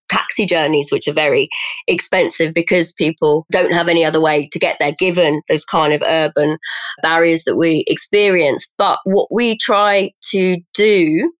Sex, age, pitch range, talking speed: female, 20-39, 175-240 Hz, 165 wpm